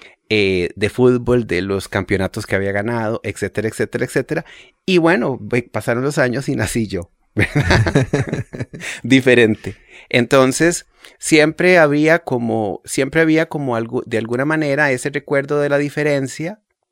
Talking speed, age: 135 wpm, 30-49